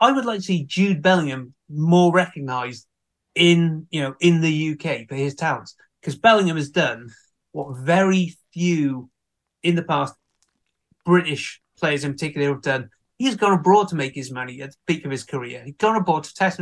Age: 30-49